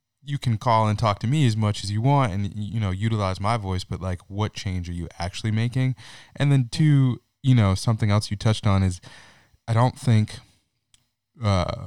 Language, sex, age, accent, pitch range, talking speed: English, male, 20-39, American, 95-115 Hz, 205 wpm